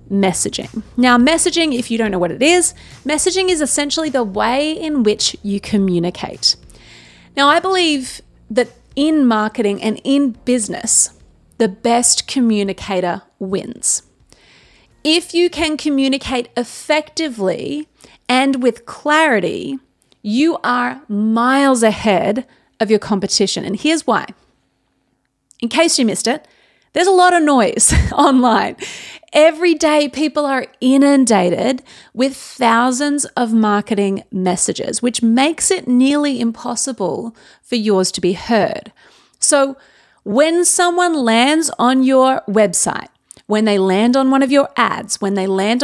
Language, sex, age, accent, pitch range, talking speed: English, female, 30-49, Australian, 220-290 Hz, 130 wpm